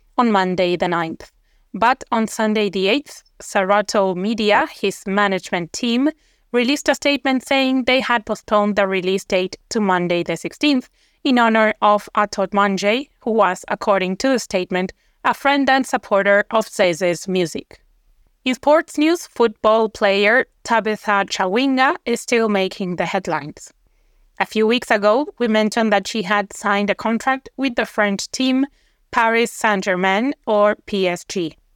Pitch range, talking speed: 195-240 Hz, 145 wpm